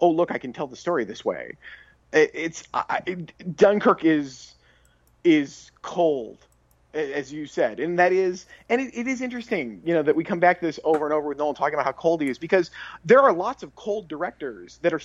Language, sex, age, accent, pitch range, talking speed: English, male, 30-49, American, 150-205 Hz, 220 wpm